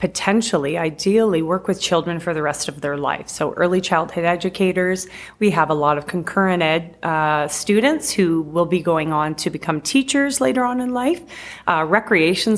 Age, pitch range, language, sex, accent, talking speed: 30-49, 160-205 Hz, English, female, American, 180 wpm